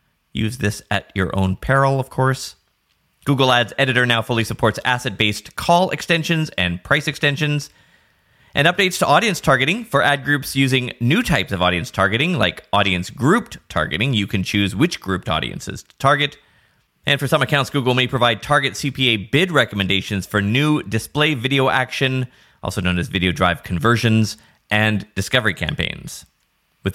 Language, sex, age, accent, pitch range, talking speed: English, male, 30-49, American, 100-145 Hz, 160 wpm